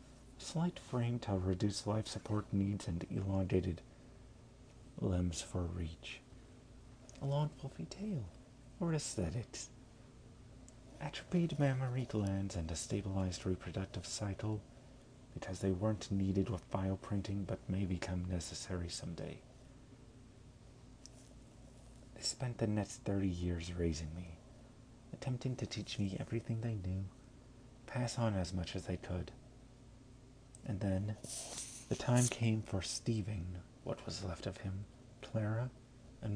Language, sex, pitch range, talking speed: English, male, 95-125 Hz, 120 wpm